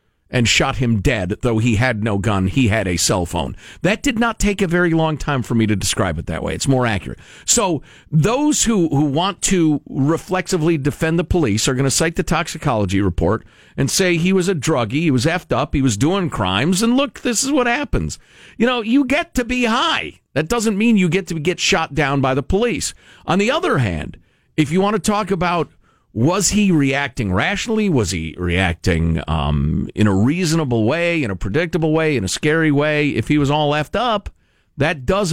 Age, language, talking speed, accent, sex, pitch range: 50-69, English, 215 wpm, American, male, 110-175 Hz